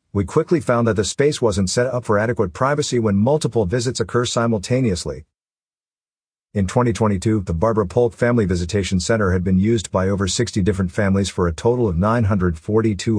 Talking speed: 175 wpm